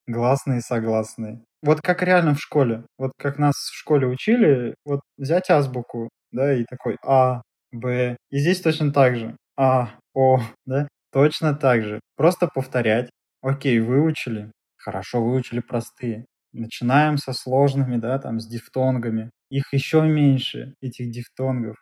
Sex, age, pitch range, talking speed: male, 20-39, 115-140 Hz, 140 wpm